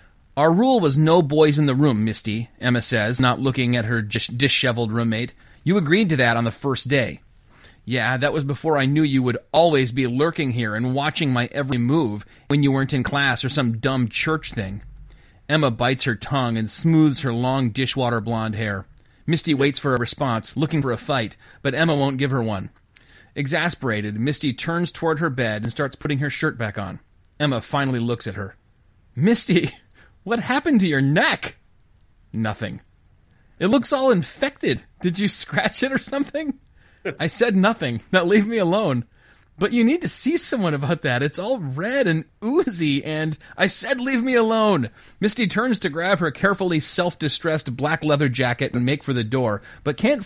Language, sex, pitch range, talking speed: English, male, 120-165 Hz, 185 wpm